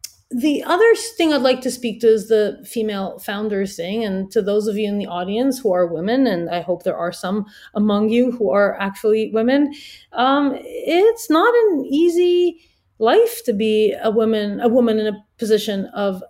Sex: female